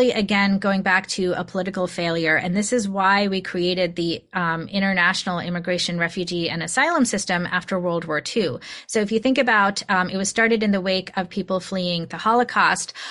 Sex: female